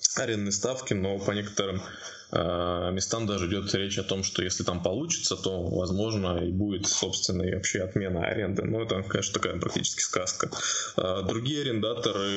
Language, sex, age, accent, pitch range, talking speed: Russian, male, 20-39, native, 95-110 Hz, 155 wpm